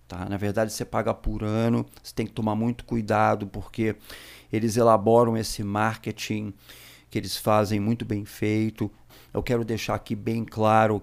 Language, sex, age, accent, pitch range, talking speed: Portuguese, male, 40-59, Brazilian, 110-125 Hz, 160 wpm